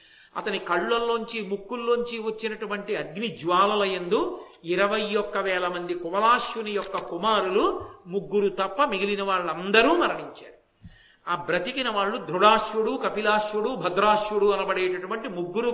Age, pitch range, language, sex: 50-69, 195-260 Hz, Telugu, male